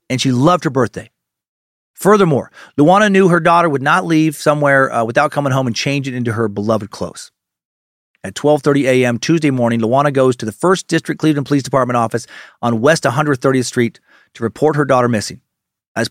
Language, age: English, 40-59